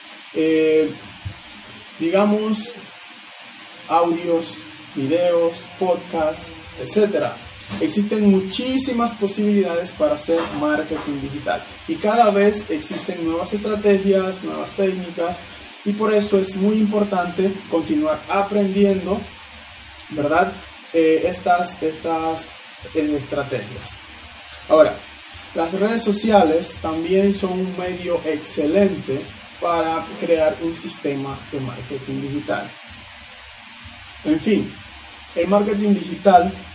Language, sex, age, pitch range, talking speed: Spanish, male, 20-39, 135-190 Hz, 90 wpm